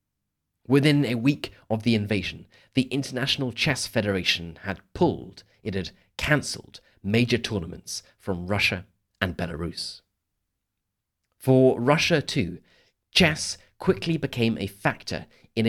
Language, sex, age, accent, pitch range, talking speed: English, male, 30-49, British, 95-120 Hz, 115 wpm